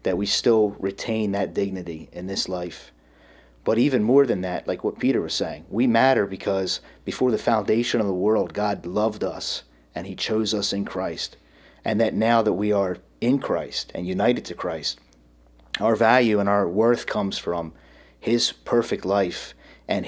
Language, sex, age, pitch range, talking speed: English, male, 30-49, 80-110 Hz, 180 wpm